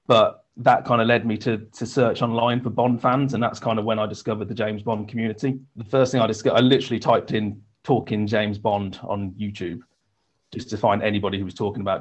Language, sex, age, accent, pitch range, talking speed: English, male, 30-49, British, 100-115 Hz, 230 wpm